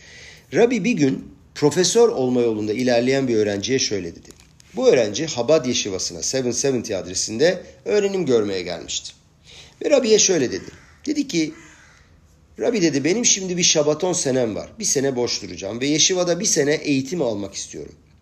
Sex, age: male, 50-69